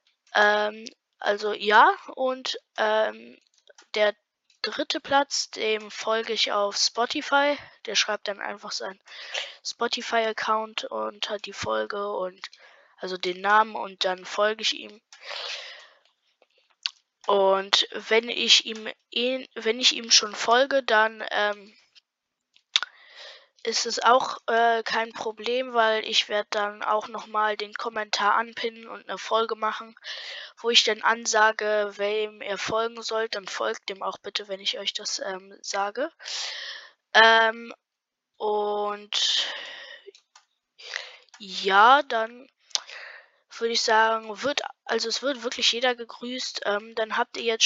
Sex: female